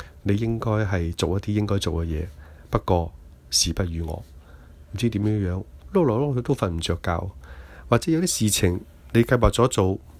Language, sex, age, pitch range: Chinese, male, 30-49, 80-110 Hz